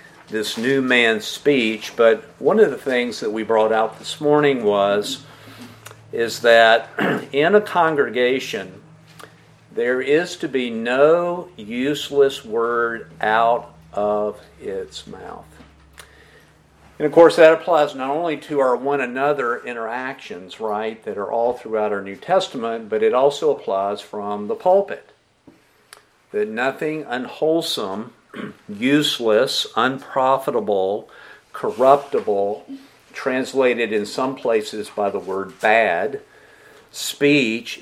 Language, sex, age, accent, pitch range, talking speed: English, male, 50-69, American, 110-150 Hz, 115 wpm